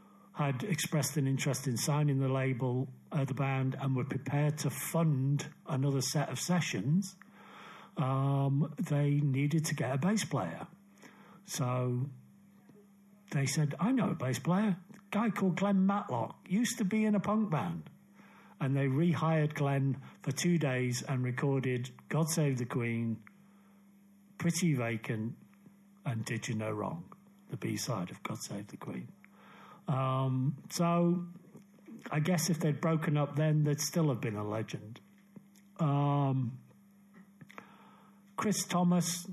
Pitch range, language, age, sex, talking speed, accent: 135-200 Hz, English, 50-69, male, 145 wpm, British